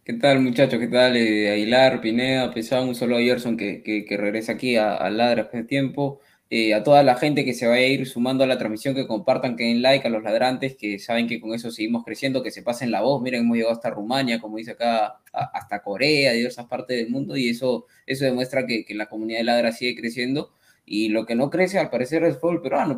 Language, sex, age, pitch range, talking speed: Spanish, male, 20-39, 120-155 Hz, 250 wpm